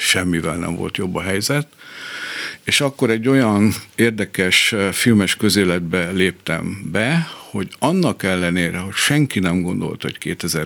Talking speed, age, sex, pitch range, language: 130 wpm, 60-79, male, 90-120 Hz, Hungarian